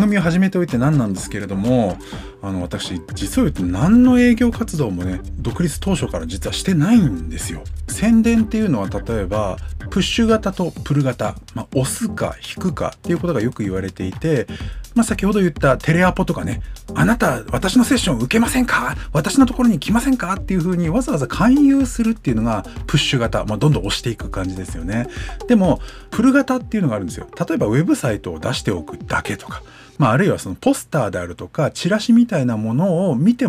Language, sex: Japanese, male